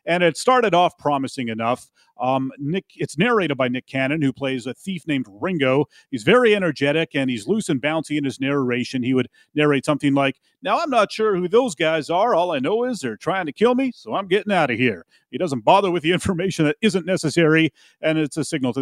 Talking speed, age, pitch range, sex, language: 230 wpm, 30-49, 130-180 Hz, male, English